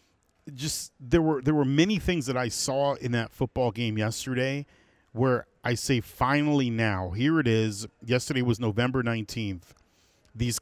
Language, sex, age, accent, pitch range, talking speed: English, male, 40-59, American, 110-140 Hz, 160 wpm